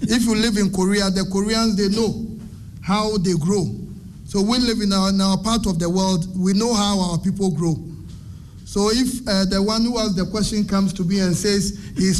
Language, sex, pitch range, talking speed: English, male, 175-215 Hz, 215 wpm